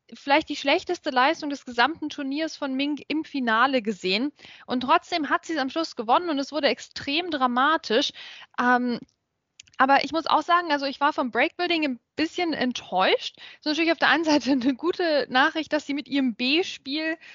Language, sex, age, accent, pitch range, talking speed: German, female, 10-29, German, 250-305 Hz, 185 wpm